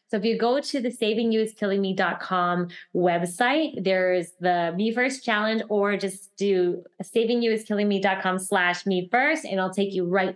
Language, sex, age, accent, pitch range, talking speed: English, female, 20-39, American, 190-245 Hz, 195 wpm